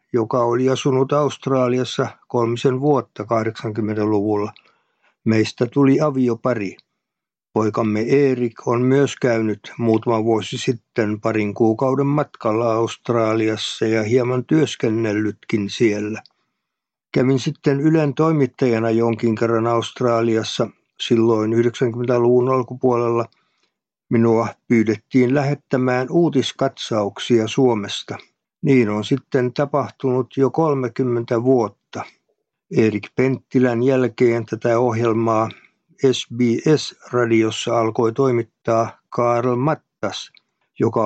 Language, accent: Finnish, native